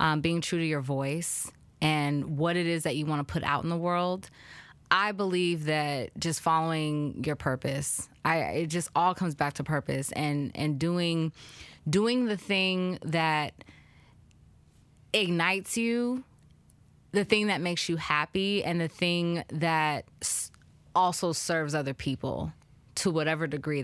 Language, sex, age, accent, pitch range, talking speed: English, female, 20-39, American, 145-175 Hz, 155 wpm